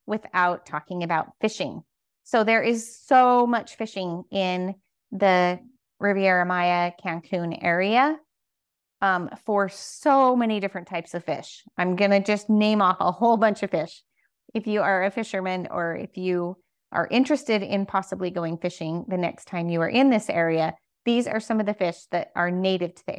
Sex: female